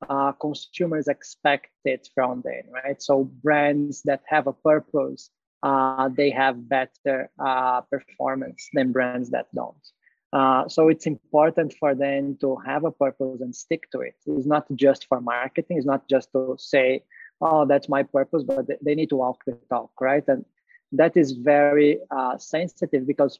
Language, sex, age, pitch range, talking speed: Vietnamese, male, 20-39, 135-150 Hz, 170 wpm